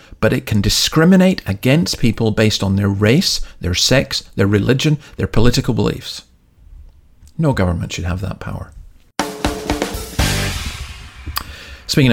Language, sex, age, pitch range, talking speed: English, male, 40-59, 95-125 Hz, 120 wpm